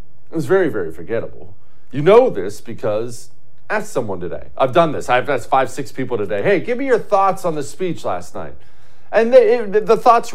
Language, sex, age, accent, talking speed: English, male, 40-59, American, 210 wpm